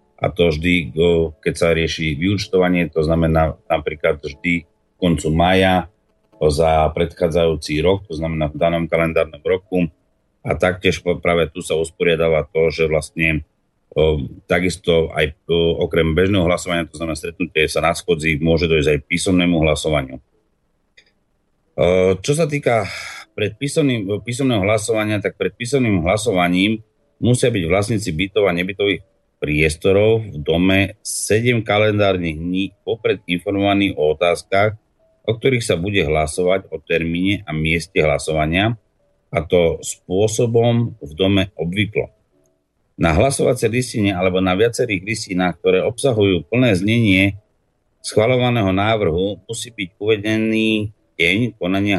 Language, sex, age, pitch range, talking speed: Slovak, male, 30-49, 80-105 Hz, 125 wpm